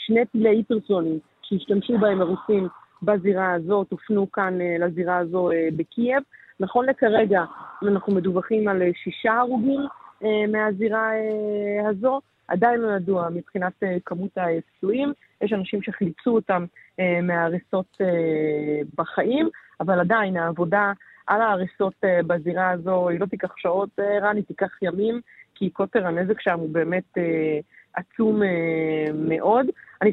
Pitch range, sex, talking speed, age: 180-225 Hz, female, 115 wpm, 20-39